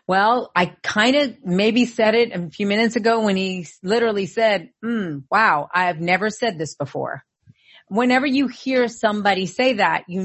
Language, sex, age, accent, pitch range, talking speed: English, female, 40-59, American, 180-225 Hz, 175 wpm